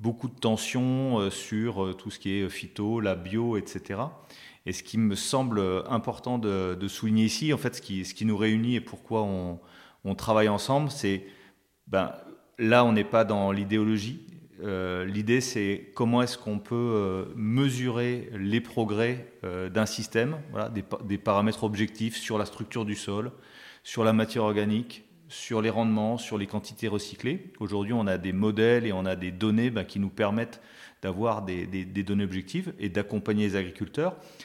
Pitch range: 100-125 Hz